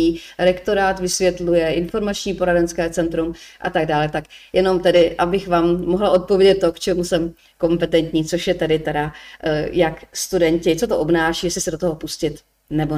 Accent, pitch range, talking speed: native, 170-210 Hz, 155 wpm